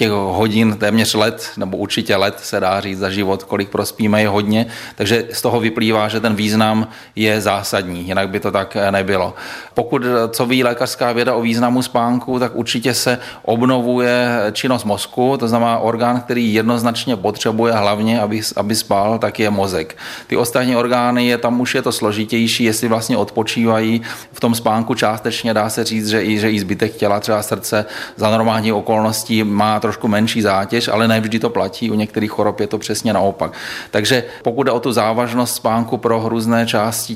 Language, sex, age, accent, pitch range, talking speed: Czech, male, 30-49, native, 105-115 Hz, 180 wpm